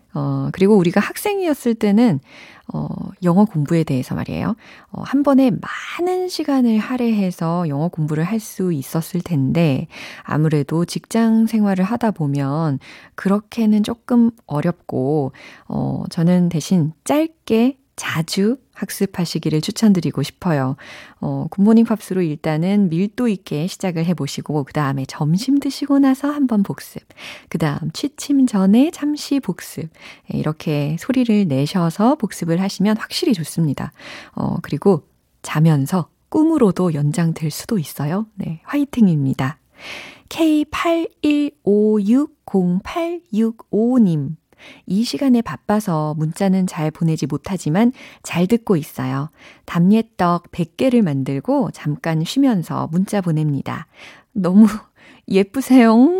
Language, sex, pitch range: Korean, female, 155-230 Hz